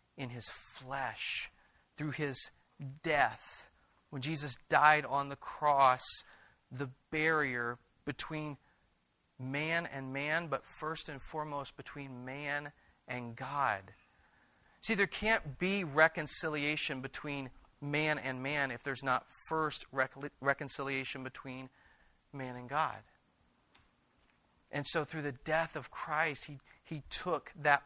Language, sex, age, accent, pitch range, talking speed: English, male, 40-59, American, 125-150 Hz, 120 wpm